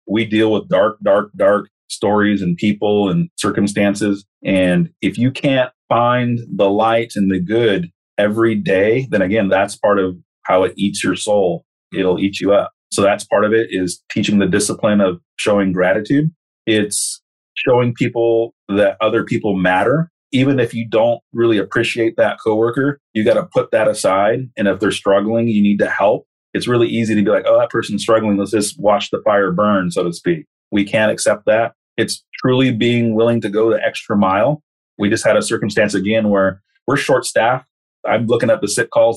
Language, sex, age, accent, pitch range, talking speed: English, male, 30-49, American, 100-115 Hz, 195 wpm